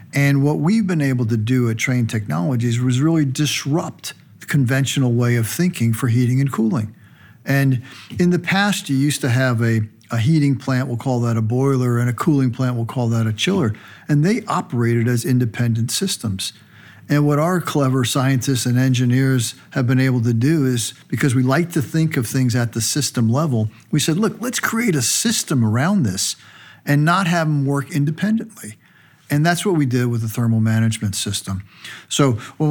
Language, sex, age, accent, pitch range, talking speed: English, male, 50-69, American, 120-150 Hz, 195 wpm